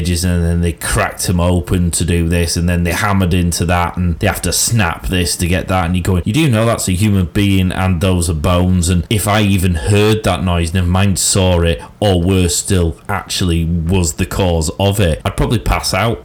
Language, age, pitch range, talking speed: English, 30-49, 85-100 Hz, 230 wpm